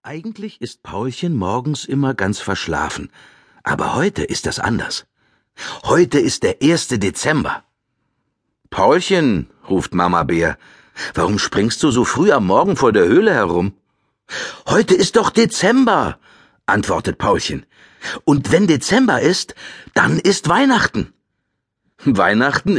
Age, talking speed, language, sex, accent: 50-69, 120 wpm, German, male, German